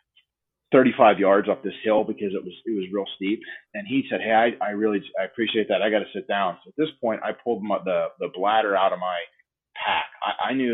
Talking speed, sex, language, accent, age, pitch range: 245 wpm, male, English, American, 30-49, 100-130 Hz